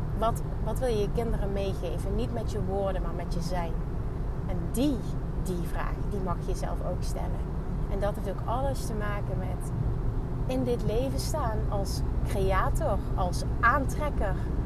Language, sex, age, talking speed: Dutch, female, 30-49, 170 wpm